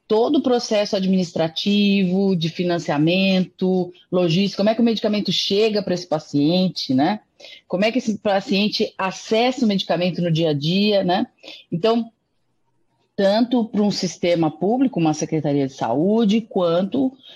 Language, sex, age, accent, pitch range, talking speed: Portuguese, female, 30-49, Brazilian, 165-220 Hz, 140 wpm